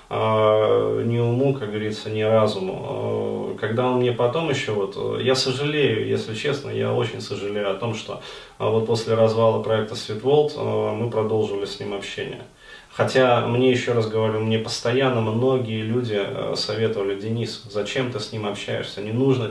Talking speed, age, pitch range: 155 wpm, 30-49, 110-130 Hz